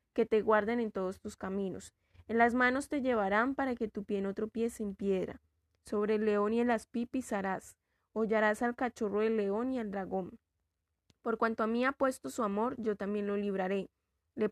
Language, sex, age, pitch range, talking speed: Spanish, female, 10-29, 200-245 Hz, 205 wpm